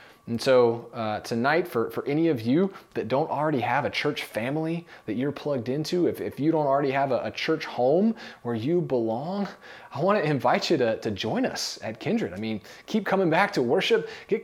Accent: American